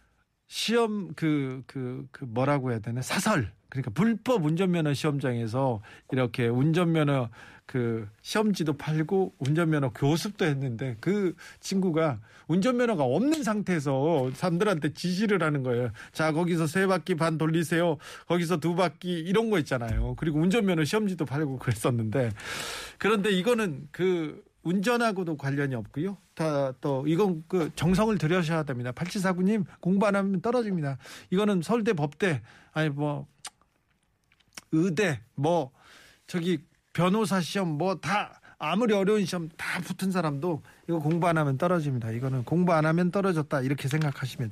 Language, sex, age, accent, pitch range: Korean, male, 40-59, native, 130-185 Hz